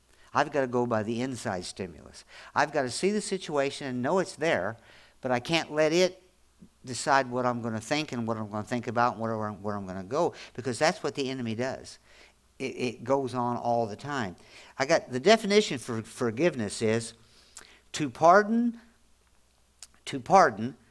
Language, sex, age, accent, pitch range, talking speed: English, male, 50-69, American, 115-165 Hz, 195 wpm